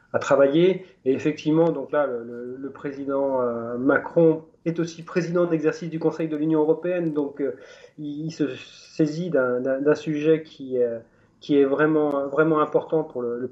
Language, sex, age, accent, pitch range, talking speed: French, male, 30-49, French, 130-160 Hz, 175 wpm